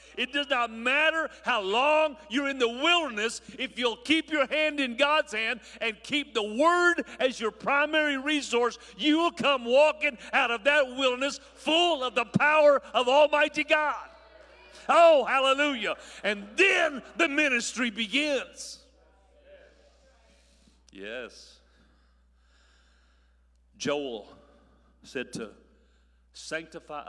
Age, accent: 50-69, American